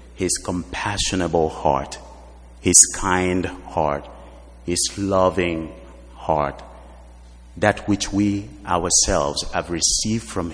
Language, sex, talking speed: English, male, 90 wpm